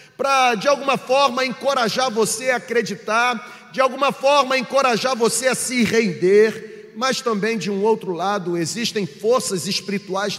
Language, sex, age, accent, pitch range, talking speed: Portuguese, male, 40-59, Brazilian, 195-245 Hz, 145 wpm